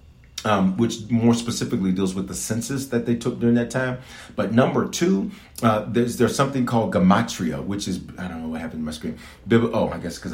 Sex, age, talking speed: male, 40-59, 220 wpm